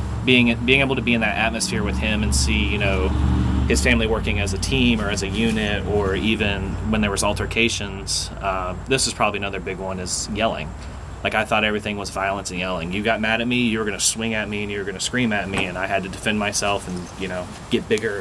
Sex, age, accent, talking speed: male, 30-49, American, 255 wpm